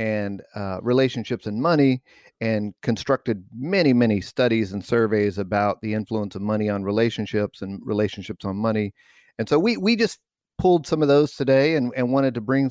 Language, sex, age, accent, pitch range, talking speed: English, male, 50-69, American, 110-135 Hz, 180 wpm